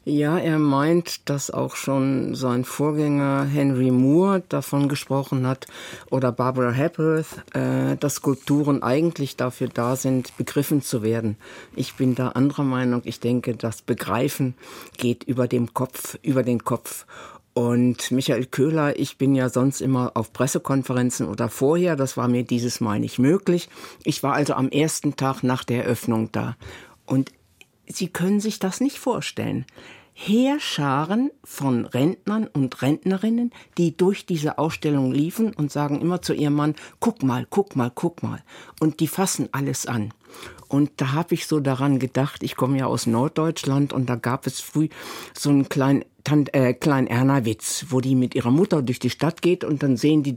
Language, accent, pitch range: German, German, 125-150 Hz